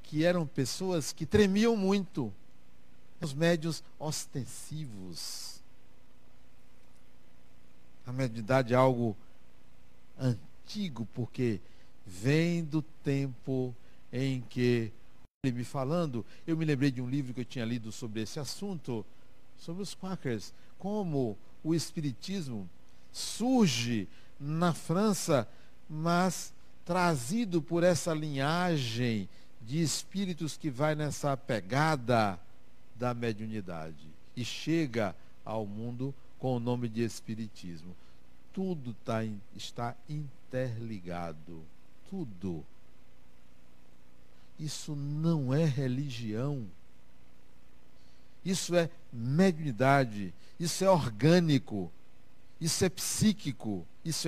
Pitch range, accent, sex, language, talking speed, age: 110-160 Hz, Brazilian, male, Portuguese, 95 wpm, 60-79